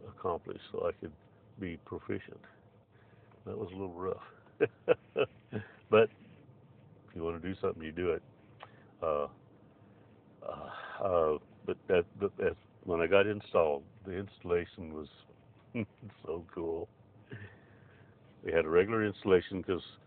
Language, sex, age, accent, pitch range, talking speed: English, male, 60-79, American, 85-105 Hz, 125 wpm